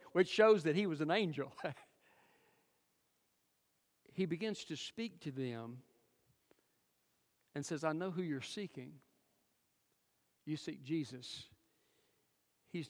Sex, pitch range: male, 140-185 Hz